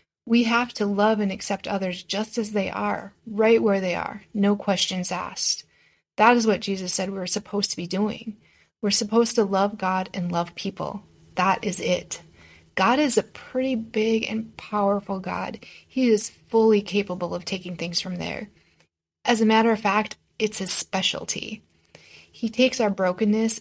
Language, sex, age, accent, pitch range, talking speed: English, female, 30-49, American, 185-220 Hz, 175 wpm